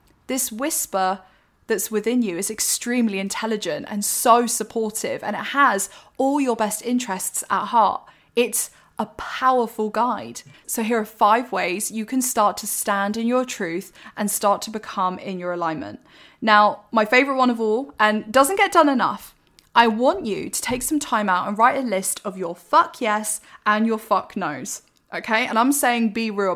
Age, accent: 10-29, British